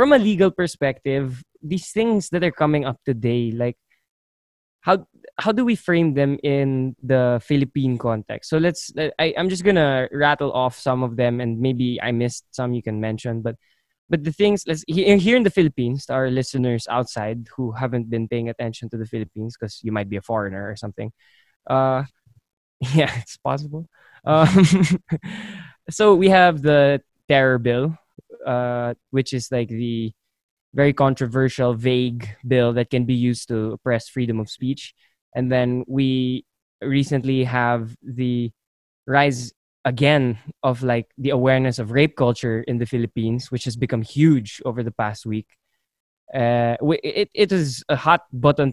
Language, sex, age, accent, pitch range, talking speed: English, male, 20-39, Filipino, 120-145 Hz, 160 wpm